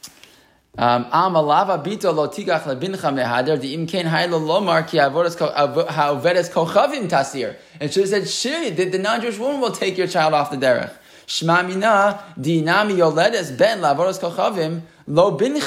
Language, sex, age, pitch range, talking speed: English, male, 20-39, 135-175 Hz, 110 wpm